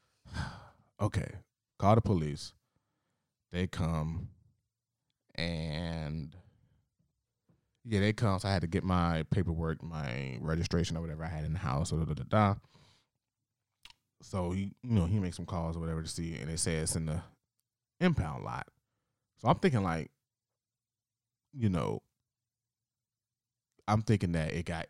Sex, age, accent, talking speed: male, 20-39, American, 150 wpm